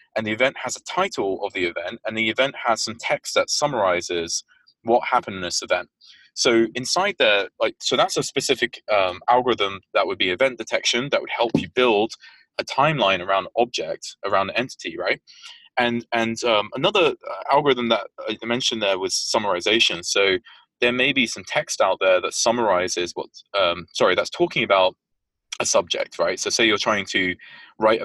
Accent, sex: British, male